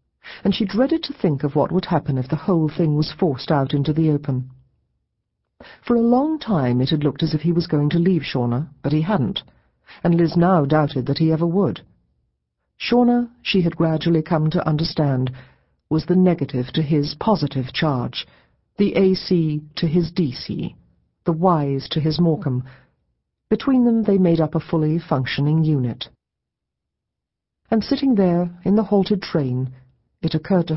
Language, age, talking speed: English, 50-69, 170 wpm